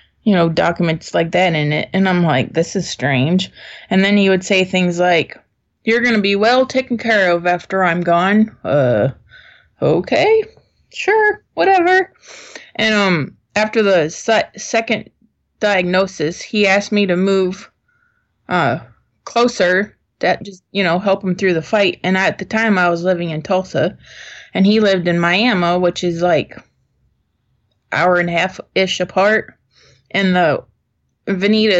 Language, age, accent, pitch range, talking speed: English, 20-39, American, 165-200 Hz, 155 wpm